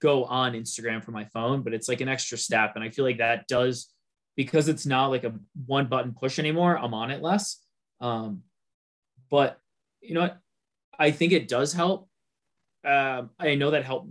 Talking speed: 195 wpm